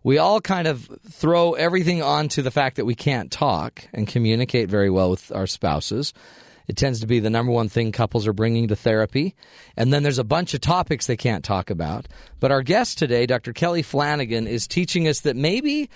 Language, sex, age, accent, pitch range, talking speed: English, male, 40-59, American, 120-155 Hz, 215 wpm